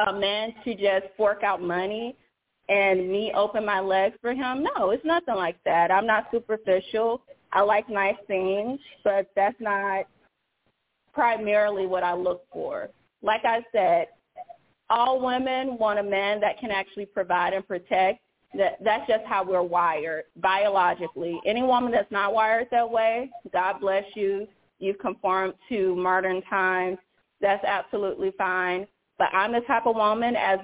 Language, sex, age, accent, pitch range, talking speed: English, female, 30-49, American, 185-225 Hz, 155 wpm